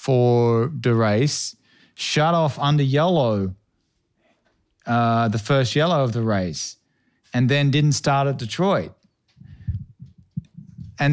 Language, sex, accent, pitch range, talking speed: English, male, Australian, 125-150 Hz, 115 wpm